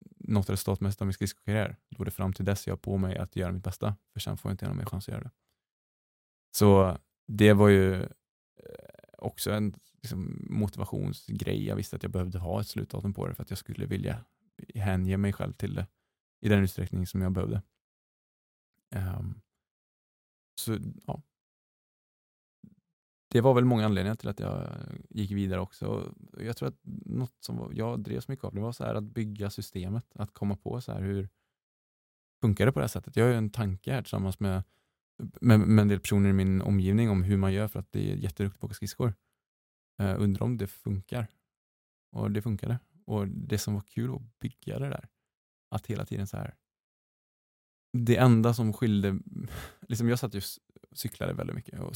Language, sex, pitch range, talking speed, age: Swedish, male, 95-115 Hz, 195 wpm, 20-39